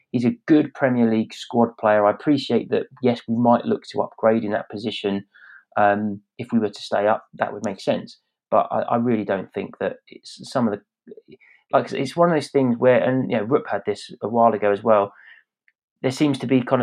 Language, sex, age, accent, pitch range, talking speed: English, male, 30-49, British, 110-125 Hz, 230 wpm